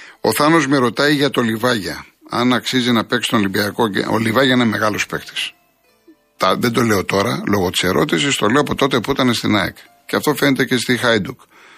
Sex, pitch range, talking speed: male, 105-130 Hz, 200 wpm